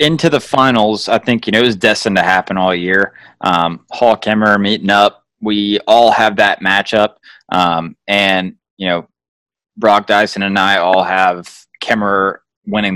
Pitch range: 100-120 Hz